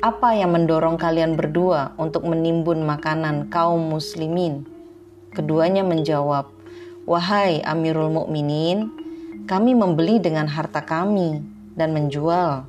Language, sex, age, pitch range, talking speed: Indonesian, female, 30-49, 155-190 Hz, 105 wpm